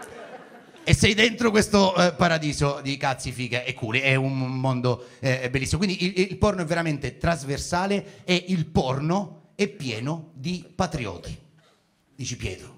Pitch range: 150-245 Hz